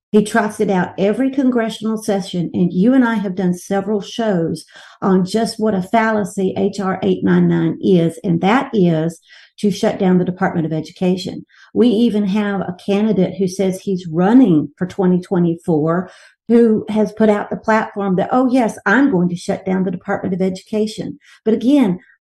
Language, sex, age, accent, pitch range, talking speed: English, female, 50-69, American, 190-235 Hz, 175 wpm